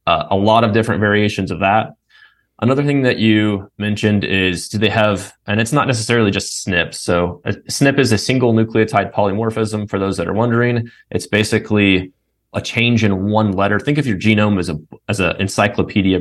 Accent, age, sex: American, 20-39, male